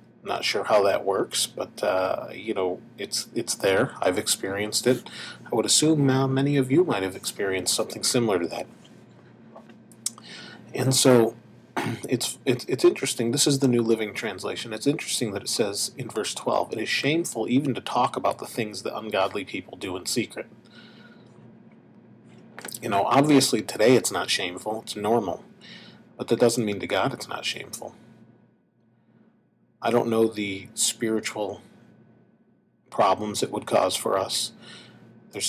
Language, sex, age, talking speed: English, male, 40-59, 160 wpm